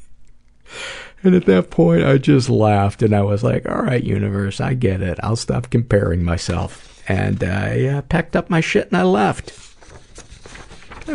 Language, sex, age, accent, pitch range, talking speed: English, male, 50-69, American, 95-115 Hz, 170 wpm